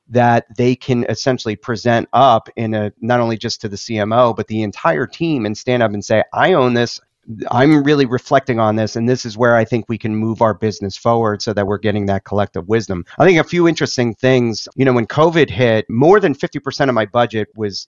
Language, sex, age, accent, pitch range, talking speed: English, male, 30-49, American, 105-125 Hz, 230 wpm